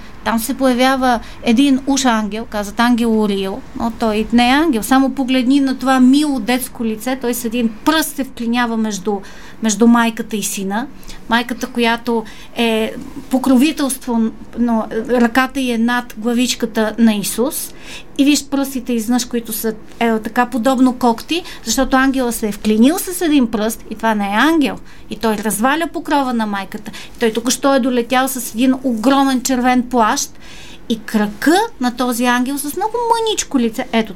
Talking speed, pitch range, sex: 160 wpm, 230-275 Hz, female